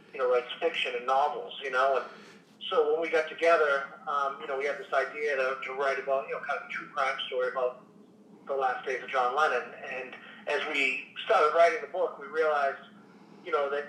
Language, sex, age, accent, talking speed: English, male, 40-59, American, 225 wpm